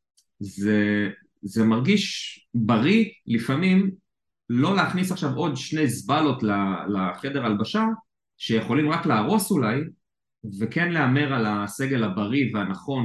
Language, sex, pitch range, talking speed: Hebrew, male, 105-140 Hz, 115 wpm